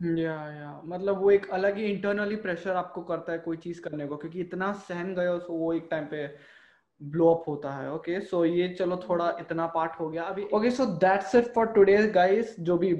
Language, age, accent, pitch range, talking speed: Hindi, 20-39, native, 165-190 Hz, 215 wpm